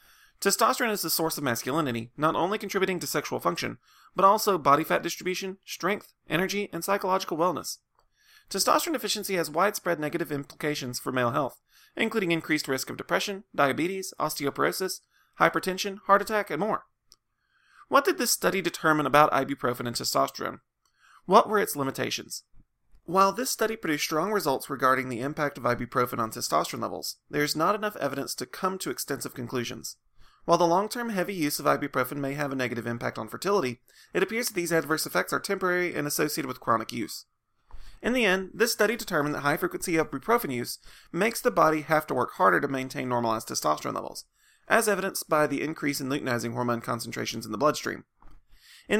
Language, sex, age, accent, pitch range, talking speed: English, male, 30-49, American, 135-200 Hz, 175 wpm